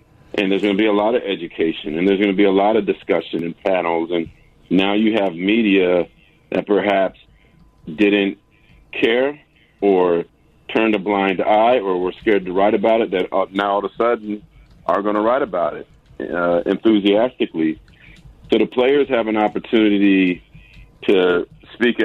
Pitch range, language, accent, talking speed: 95-115 Hz, English, American, 170 wpm